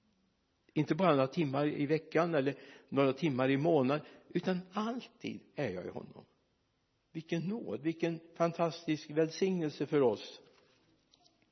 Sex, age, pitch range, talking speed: male, 60-79, 135-180 Hz, 125 wpm